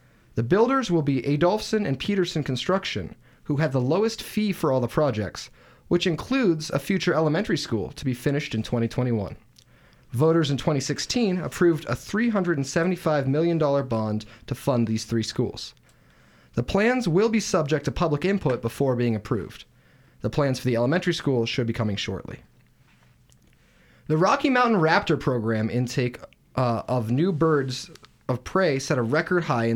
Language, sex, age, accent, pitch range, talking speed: English, male, 30-49, American, 120-170 Hz, 160 wpm